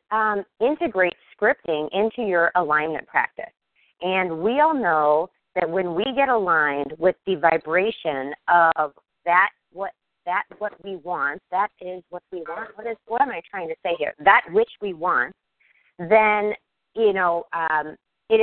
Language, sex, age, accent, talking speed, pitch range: English, female, 40-59, American, 160 wpm, 170-240 Hz